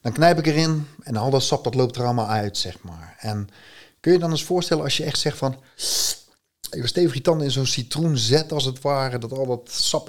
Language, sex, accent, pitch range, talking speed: Dutch, male, Dutch, 105-140 Hz, 245 wpm